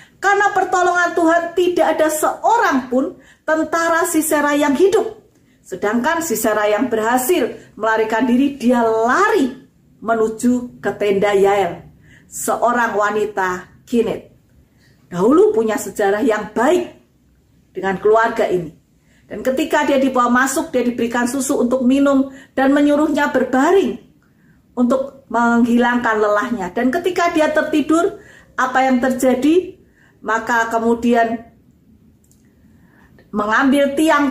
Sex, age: female, 40-59